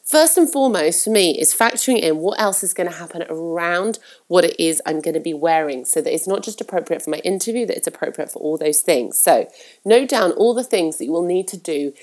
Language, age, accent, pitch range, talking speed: English, 30-49, British, 170-235 Hz, 255 wpm